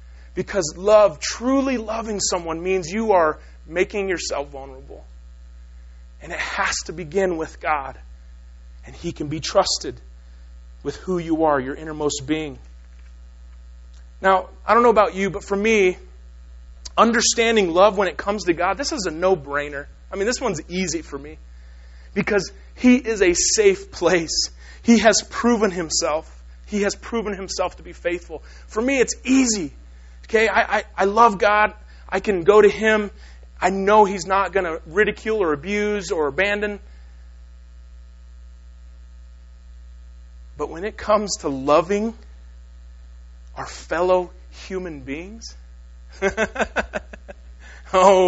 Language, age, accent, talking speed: English, 30-49, American, 140 wpm